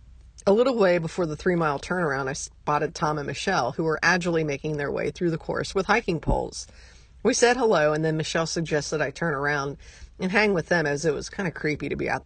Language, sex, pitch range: English, female, 150-175 Hz